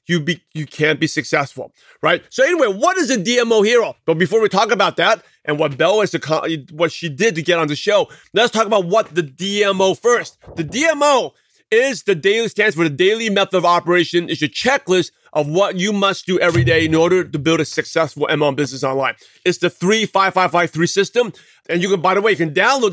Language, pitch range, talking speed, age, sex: English, 160-200 Hz, 230 wpm, 30-49, male